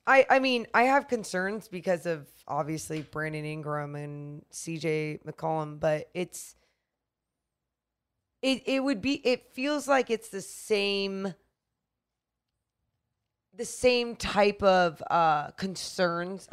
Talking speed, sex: 115 wpm, female